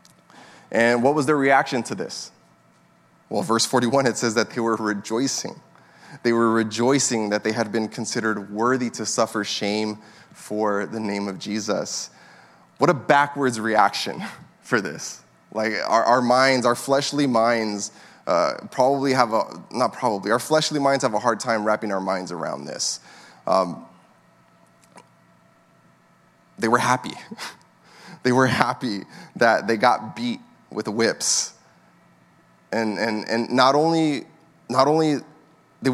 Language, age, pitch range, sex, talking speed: English, 20-39, 110-145 Hz, male, 145 wpm